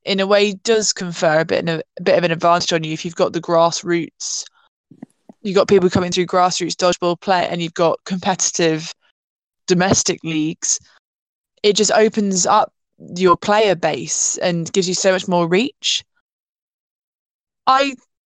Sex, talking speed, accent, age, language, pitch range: female, 165 wpm, British, 20-39, English, 180-215 Hz